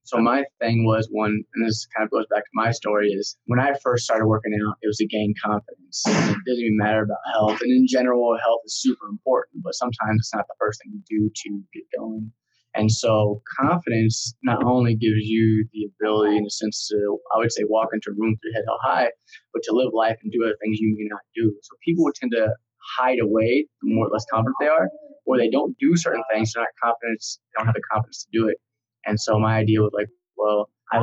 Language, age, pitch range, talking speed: English, 20-39, 110-125 Hz, 245 wpm